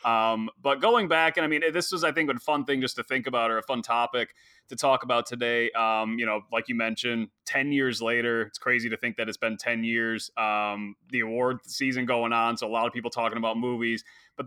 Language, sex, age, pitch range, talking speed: English, male, 20-39, 115-135 Hz, 245 wpm